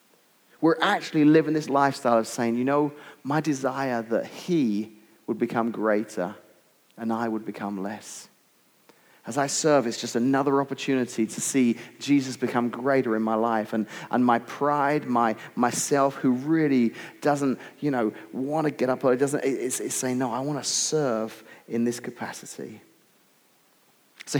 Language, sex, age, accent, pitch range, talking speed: English, male, 30-49, British, 120-150 Hz, 160 wpm